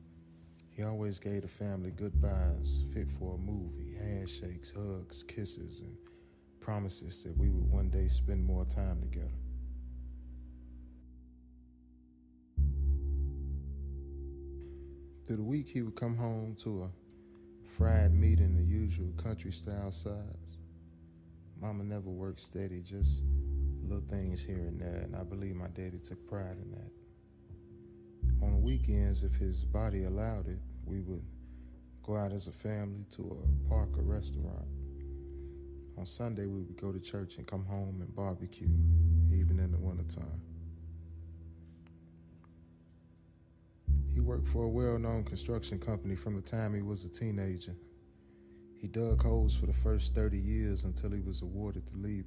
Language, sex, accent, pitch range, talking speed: English, male, American, 70-95 Hz, 140 wpm